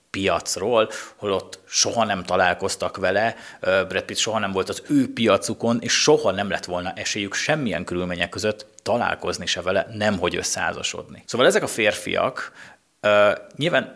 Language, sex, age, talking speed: Hungarian, male, 30-49, 140 wpm